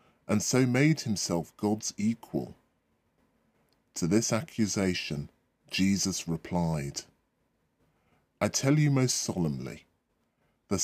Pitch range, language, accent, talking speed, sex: 100-150 Hz, English, British, 95 wpm, female